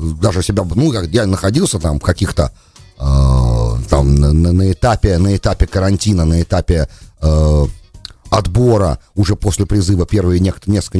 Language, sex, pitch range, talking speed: English, male, 95-125 Hz, 125 wpm